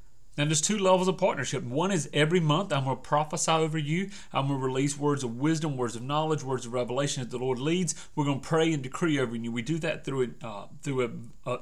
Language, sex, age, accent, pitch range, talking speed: English, male, 30-49, American, 125-160 Hz, 225 wpm